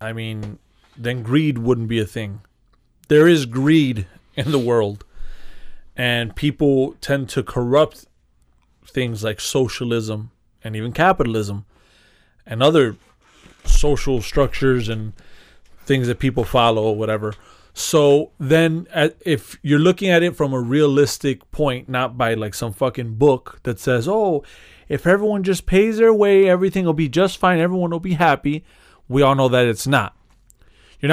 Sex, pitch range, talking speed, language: male, 115-155 Hz, 150 wpm, English